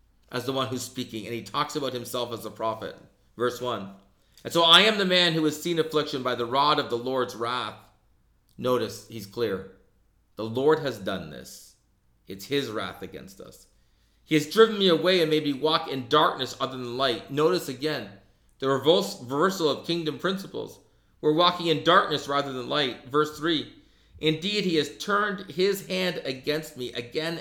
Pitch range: 115-165 Hz